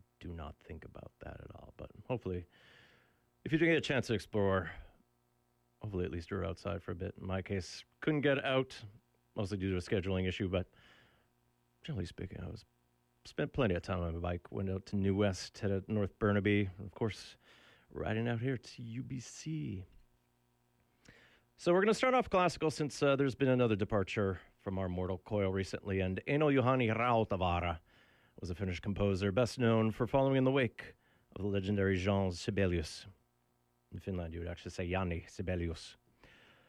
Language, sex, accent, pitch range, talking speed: English, male, American, 90-125 Hz, 185 wpm